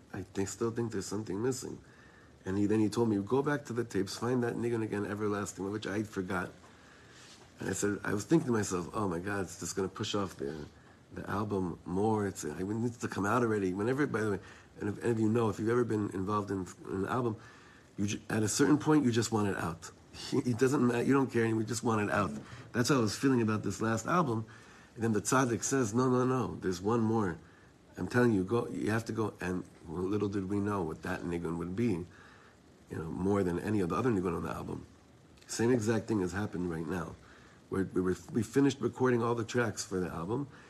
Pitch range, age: 95-115 Hz, 60-79